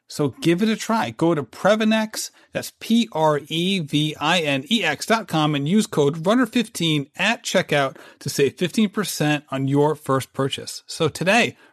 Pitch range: 140-175 Hz